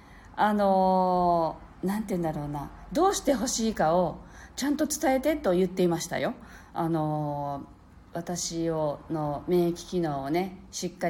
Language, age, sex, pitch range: Japanese, 40-59, female, 160-245 Hz